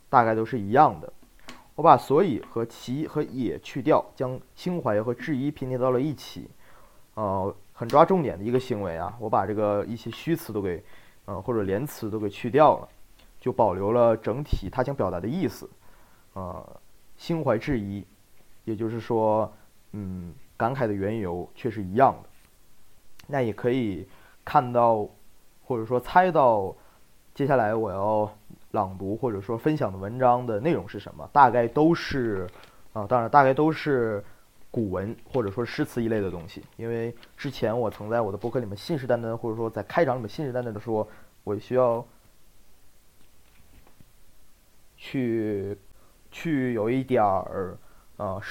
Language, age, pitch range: Chinese, 20-39, 105-125 Hz